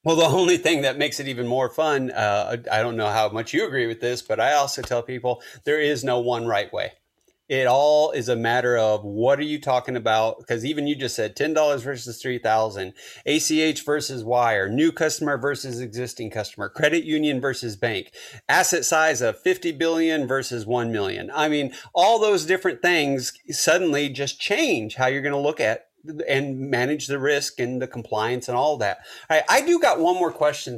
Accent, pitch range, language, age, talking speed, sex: American, 120-150 Hz, English, 30-49, 195 wpm, male